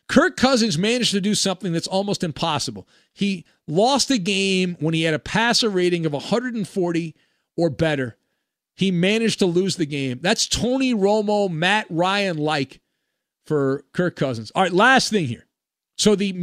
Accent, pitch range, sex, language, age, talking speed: American, 155-220 Hz, male, English, 50-69, 160 wpm